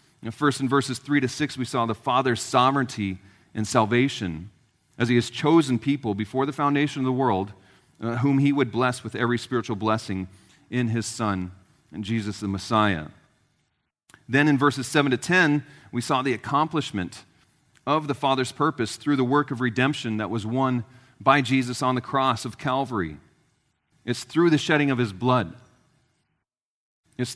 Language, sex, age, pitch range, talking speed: English, male, 40-59, 110-135 Hz, 165 wpm